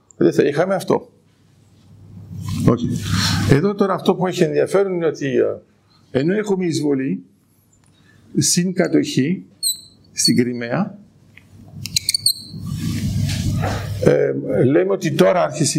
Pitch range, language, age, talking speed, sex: 110-180 Hz, Greek, 50-69, 95 wpm, male